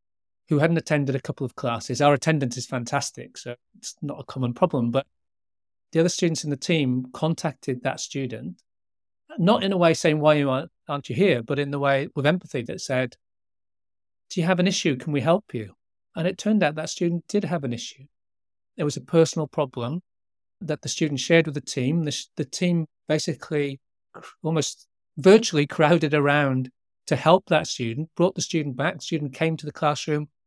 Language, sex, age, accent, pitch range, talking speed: English, male, 40-59, British, 130-160 Hz, 190 wpm